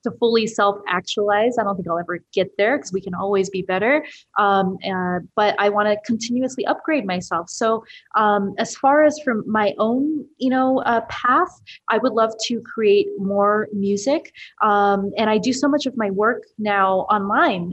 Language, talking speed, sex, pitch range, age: English, 185 wpm, female, 195-230 Hz, 20-39